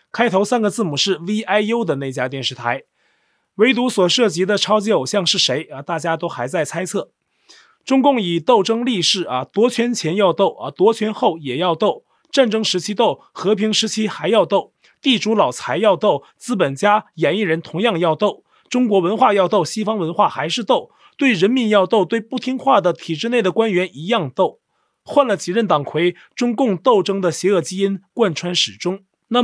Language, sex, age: Chinese, male, 30-49